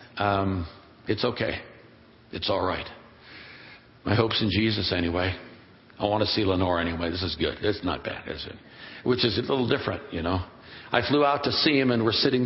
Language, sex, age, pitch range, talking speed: English, male, 60-79, 105-130 Hz, 195 wpm